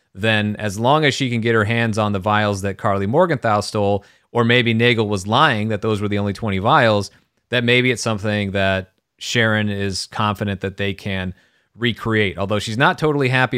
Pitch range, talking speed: 105-120 Hz, 200 wpm